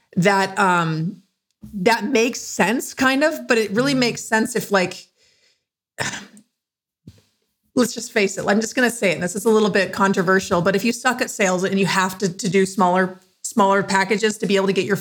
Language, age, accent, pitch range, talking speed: English, 40-59, American, 190-235 Hz, 200 wpm